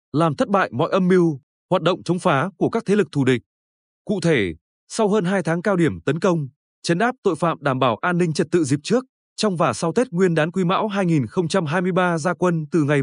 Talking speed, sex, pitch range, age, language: 235 wpm, male, 150-195 Hz, 20-39, Vietnamese